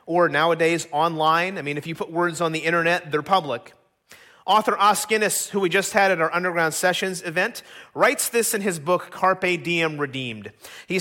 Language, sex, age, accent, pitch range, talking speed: English, male, 30-49, American, 165-210 Hz, 185 wpm